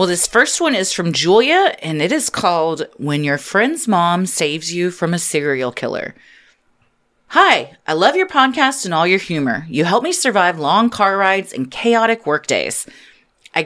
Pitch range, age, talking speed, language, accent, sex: 160-245 Hz, 30-49, 185 wpm, English, American, female